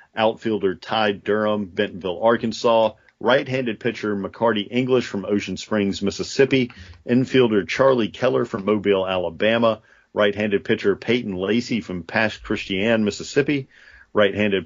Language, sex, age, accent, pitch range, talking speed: English, male, 40-59, American, 100-125 Hz, 115 wpm